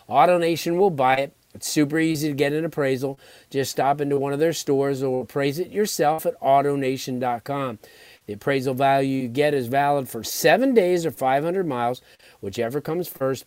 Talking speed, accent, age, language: 180 wpm, American, 50-69, English